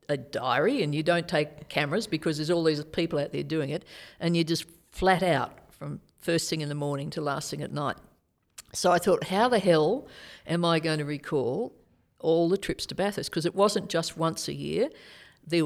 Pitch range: 145-170 Hz